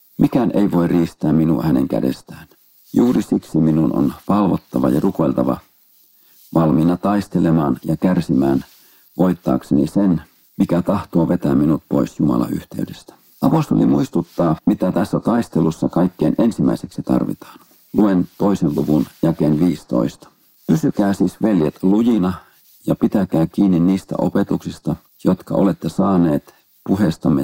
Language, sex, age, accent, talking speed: Finnish, male, 50-69, native, 115 wpm